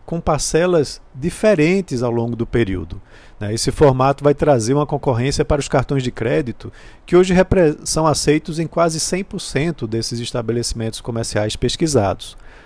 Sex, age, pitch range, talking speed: male, 40-59, 120-165 Hz, 135 wpm